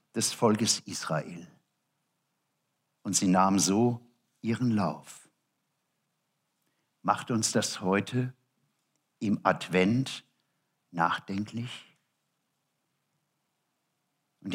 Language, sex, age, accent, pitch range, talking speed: German, male, 60-79, German, 135-195 Hz, 70 wpm